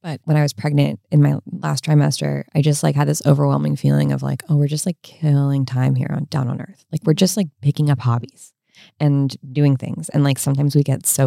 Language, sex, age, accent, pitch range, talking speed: English, female, 20-39, American, 135-160 Hz, 240 wpm